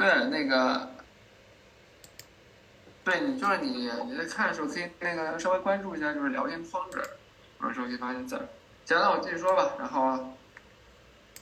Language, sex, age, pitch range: Chinese, male, 20-39, 165-280 Hz